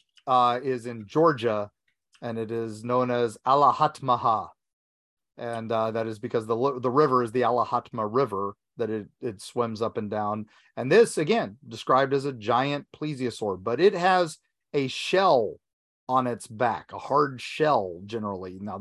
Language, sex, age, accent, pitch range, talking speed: English, male, 30-49, American, 110-130 Hz, 160 wpm